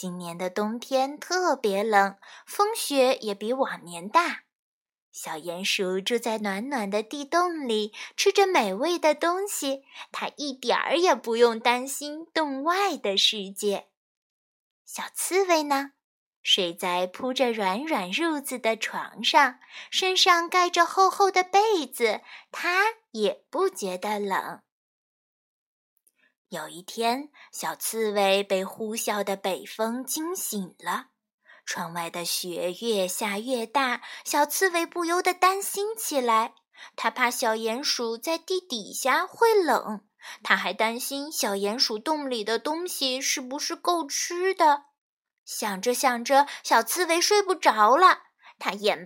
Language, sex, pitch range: Chinese, female, 215-340 Hz